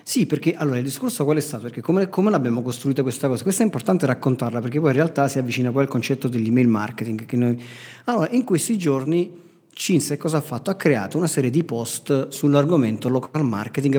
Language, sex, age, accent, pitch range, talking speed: Italian, male, 40-59, native, 125-160 Hz, 210 wpm